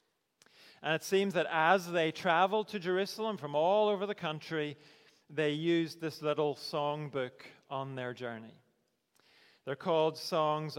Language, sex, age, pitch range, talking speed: English, male, 40-59, 145-185 Hz, 140 wpm